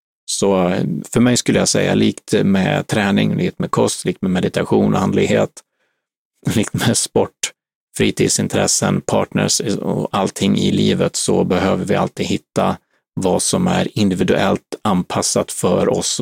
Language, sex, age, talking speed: Swedish, male, 30-49, 140 wpm